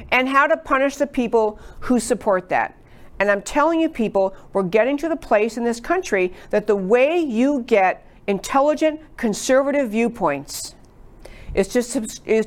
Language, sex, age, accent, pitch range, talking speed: English, female, 50-69, American, 180-230 Hz, 150 wpm